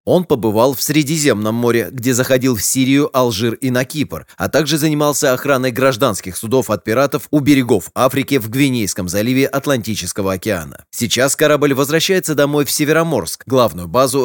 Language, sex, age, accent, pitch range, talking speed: Russian, male, 20-39, native, 110-145 Hz, 155 wpm